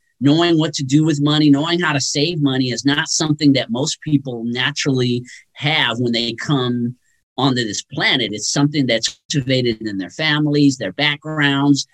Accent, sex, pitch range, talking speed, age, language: American, male, 125-150 Hz, 170 wpm, 40-59, English